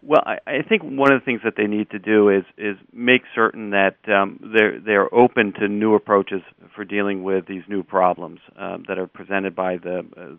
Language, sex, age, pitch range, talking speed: English, male, 40-59, 95-105 Hz, 220 wpm